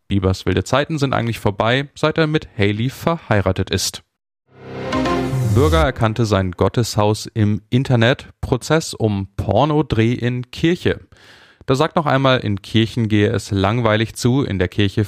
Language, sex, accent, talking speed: German, male, German, 145 wpm